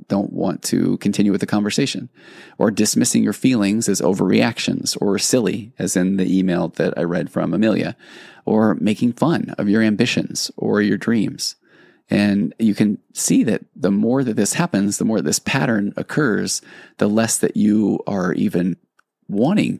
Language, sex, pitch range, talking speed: English, male, 100-115 Hz, 165 wpm